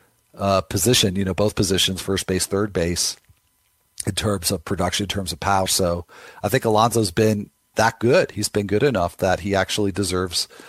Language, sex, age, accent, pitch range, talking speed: English, male, 40-59, American, 100-125 Hz, 185 wpm